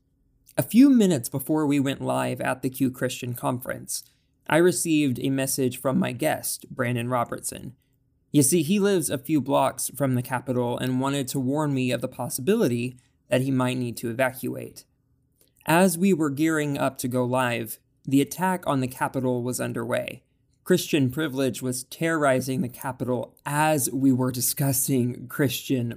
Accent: American